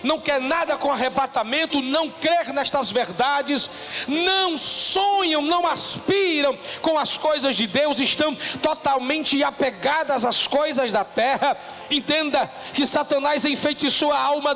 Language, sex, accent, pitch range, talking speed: Portuguese, male, Brazilian, 280-310 Hz, 130 wpm